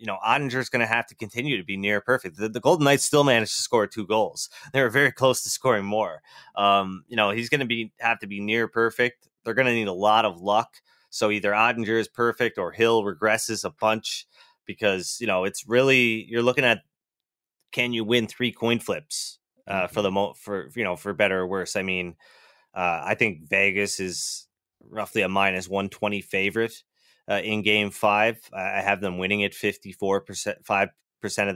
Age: 20-39